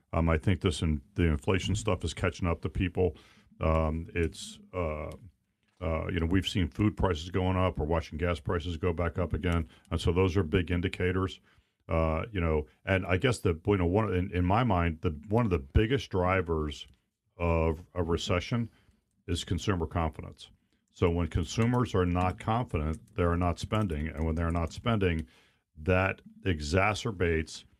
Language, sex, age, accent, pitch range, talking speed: English, male, 50-69, American, 85-100 Hz, 175 wpm